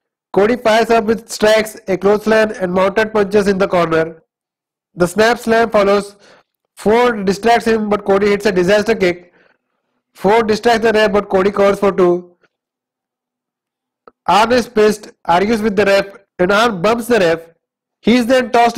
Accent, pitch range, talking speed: Indian, 190-230 Hz, 165 wpm